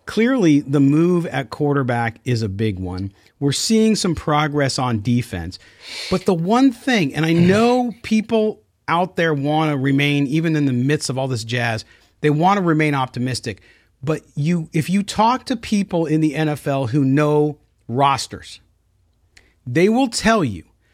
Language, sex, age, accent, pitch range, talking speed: English, male, 40-59, American, 115-190 Hz, 165 wpm